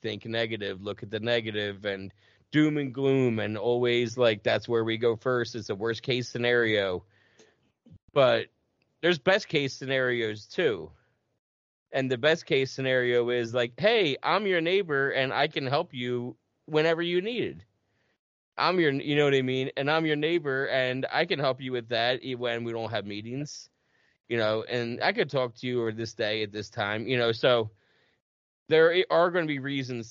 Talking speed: 180 wpm